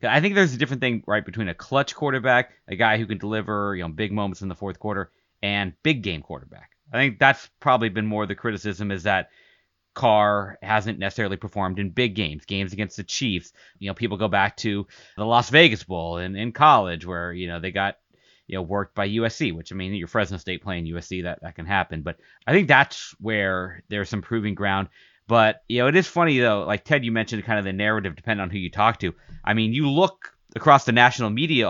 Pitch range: 100-140 Hz